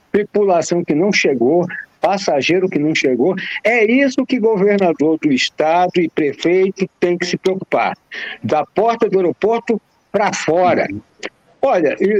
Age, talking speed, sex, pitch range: 60-79, 135 wpm, male, 165-235 Hz